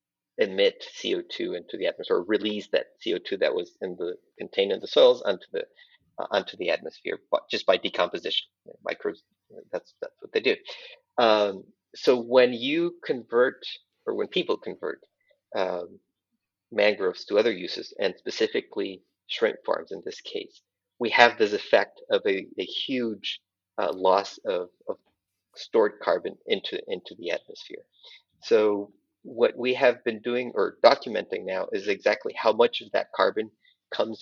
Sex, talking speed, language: male, 160 wpm, English